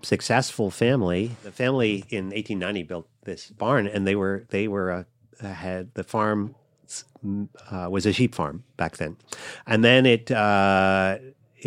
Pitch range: 95-120 Hz